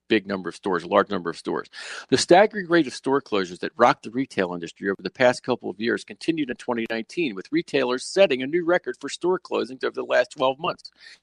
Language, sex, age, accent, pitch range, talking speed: English, male, 50-69, American, 115-165 Hz, 230 wpm